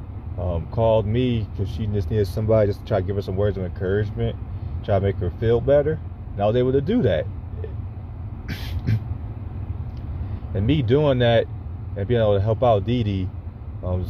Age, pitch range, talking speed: 30-49, 95-110 Hz, 185 wpm